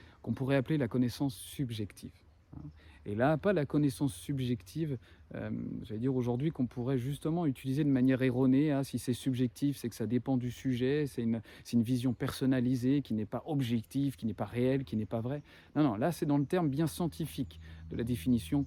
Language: French